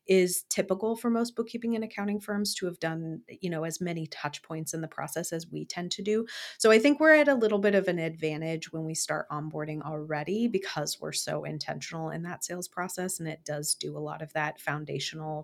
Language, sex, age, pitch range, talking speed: English, female, 30-49, 165-215 Hz, 225 wpm